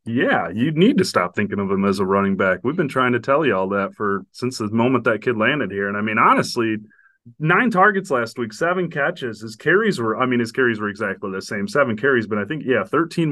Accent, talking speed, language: American, 250 wpm, English